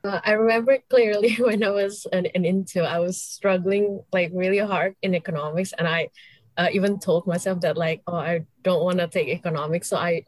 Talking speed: 205 wpm